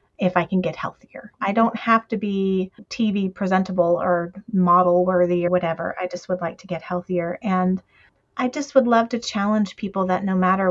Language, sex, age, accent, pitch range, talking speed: English, female, 30-49, American, 175-200 Hz, 195 wpm